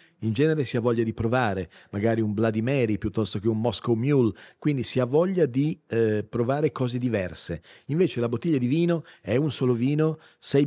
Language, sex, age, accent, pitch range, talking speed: Italian, male, 40-59, native, 110-135 Hz, 195 wpm